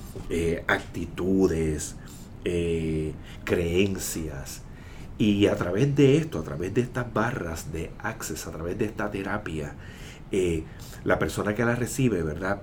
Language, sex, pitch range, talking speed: English, male, 85-110 Hz, 135 wpm